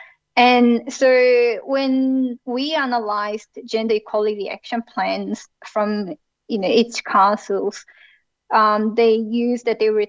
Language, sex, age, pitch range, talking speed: English, female, 20-39, 210-250 Hz, 120 wpm